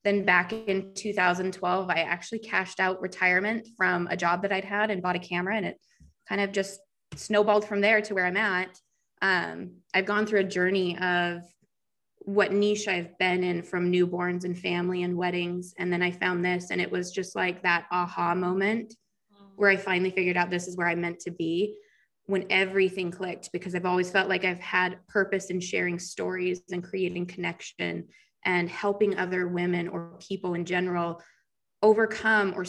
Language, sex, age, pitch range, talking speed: English, female, 20-39, 175-205 Hz, 185 wpm